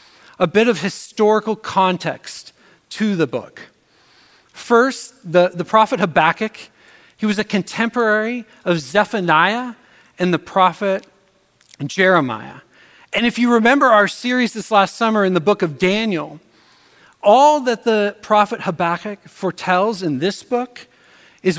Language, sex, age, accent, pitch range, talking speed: English, male, 40-59, American, 175-215 Hz, 130 wpm